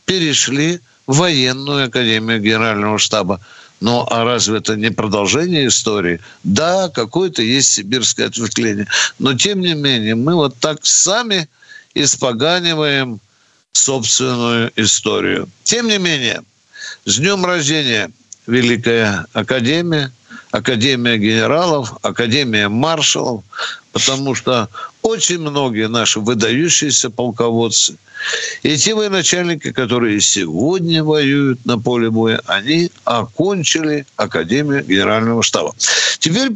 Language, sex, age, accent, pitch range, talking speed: Russian, male, 60-79, native, 115-170 Hz, 105 wpm